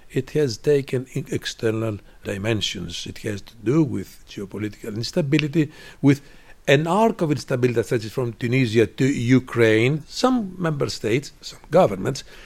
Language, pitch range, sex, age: English, 115-160 Hz, male, 60-79